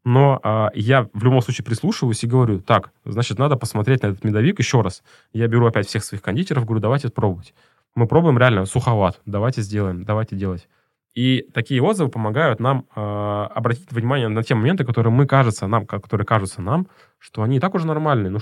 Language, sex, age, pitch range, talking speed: Russian, male, 20-39, 105-130 Hz, 190 wpm